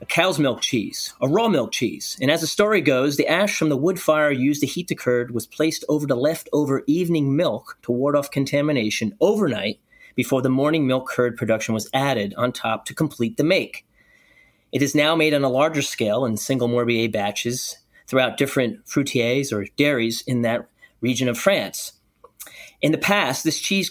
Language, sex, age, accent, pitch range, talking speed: English, male, 30-49, American, 120-150 Hz, 195 wpm